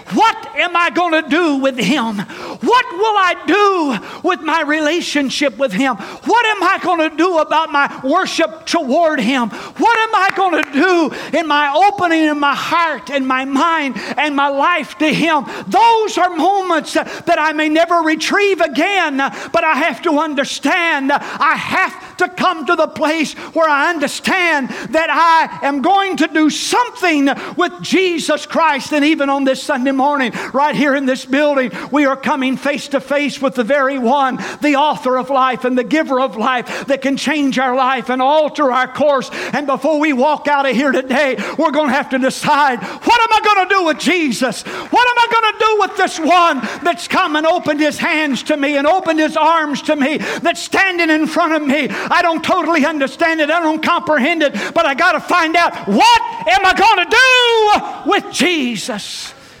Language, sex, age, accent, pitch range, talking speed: English, male, 50-69, American, 275-345 Hz, 190 wpm